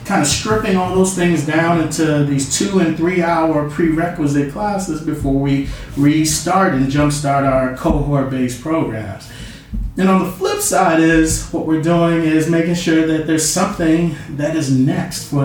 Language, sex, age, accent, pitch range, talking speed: English, male, 30-49, American, 140-170 Hz, 165 wpm